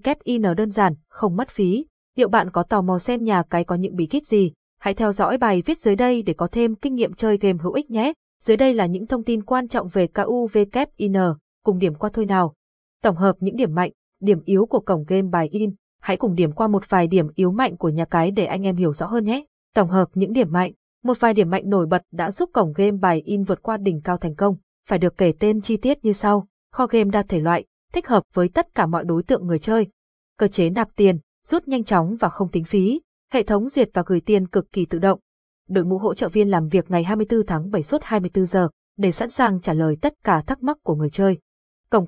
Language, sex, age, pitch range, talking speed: Vietnamese, female, 20-39, 180-225 Hz, 250 wpm